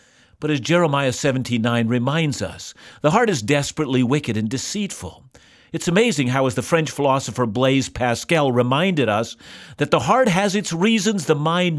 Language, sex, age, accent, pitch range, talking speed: English, male, 50-69, American, 125-180 Hz, 165 wpm